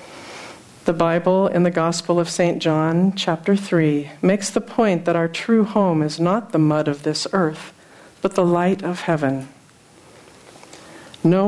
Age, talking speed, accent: 50-69, 155 wpm, American